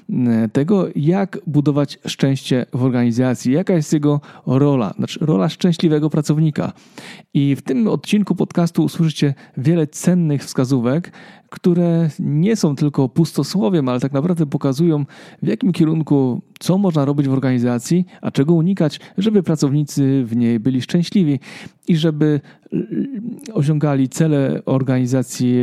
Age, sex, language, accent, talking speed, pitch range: 40-59, male, Polish, native, 125 wpm, 130-175 Hz